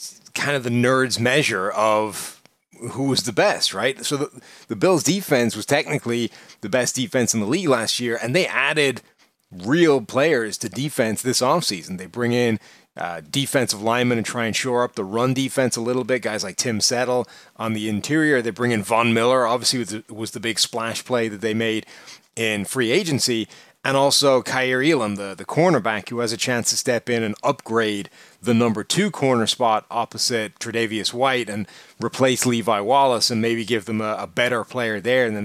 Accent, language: American, English